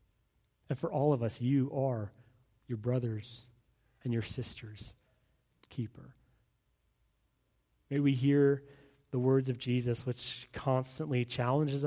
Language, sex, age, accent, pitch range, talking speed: English, male, 30-49, American, 115-140 Hz, 115 wpm